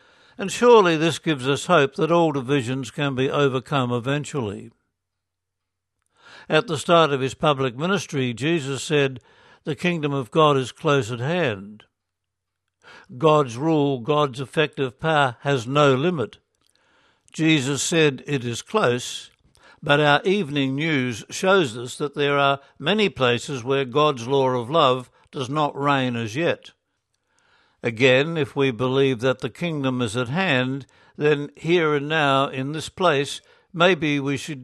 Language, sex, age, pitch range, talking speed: English, male, 60-79, 130-155 Hz, 145 wpm